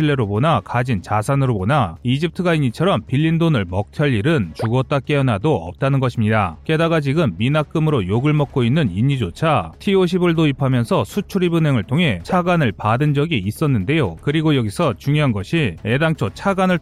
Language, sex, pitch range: Korean, male, 120-160 Hz